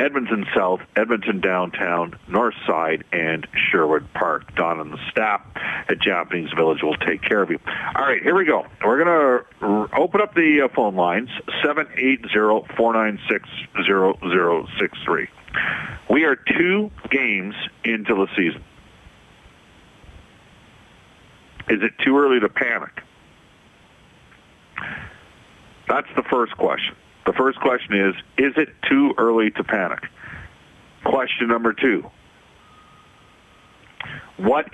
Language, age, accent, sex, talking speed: English, 50-69, American, male, 115 wpm